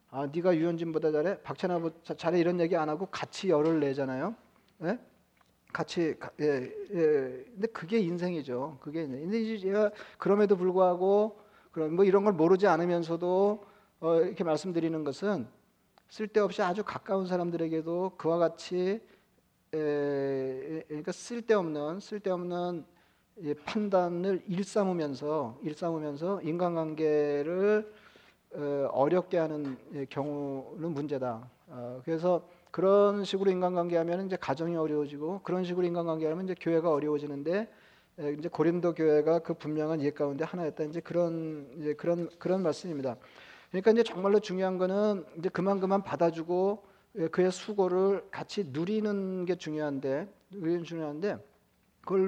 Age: 40-59